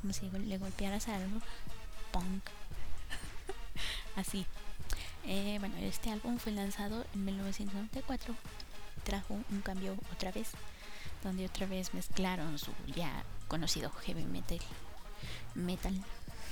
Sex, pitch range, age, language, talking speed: female, 185-215 Hz, 20-39, Spanish, 115 wpm